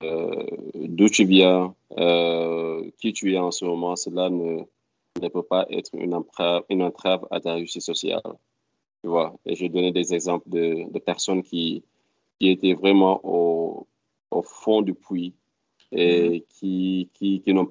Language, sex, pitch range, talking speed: French, male, 85-95 Hz, 160 wpm